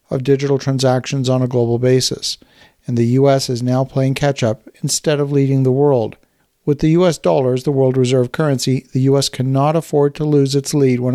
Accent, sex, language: American, male, English